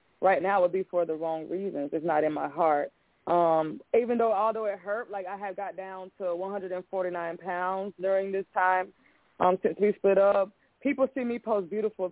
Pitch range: 175-200 Hz